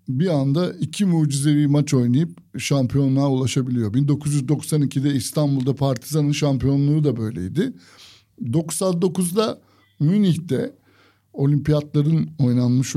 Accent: native